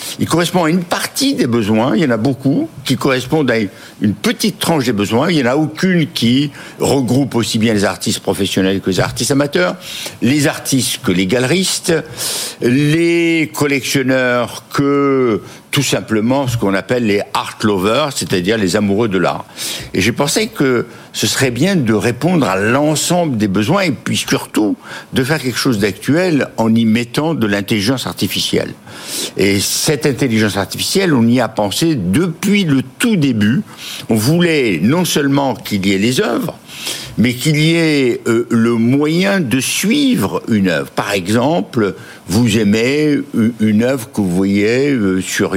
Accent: French